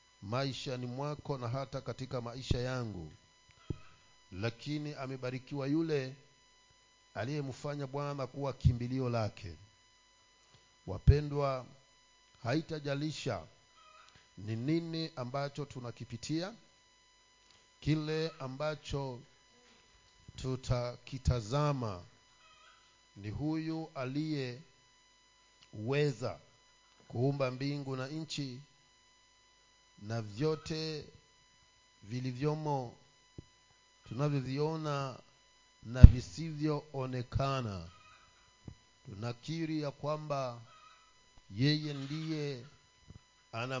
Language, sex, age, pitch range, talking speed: Swahili, male, 50-69, 115-145 Hz, 65 wpm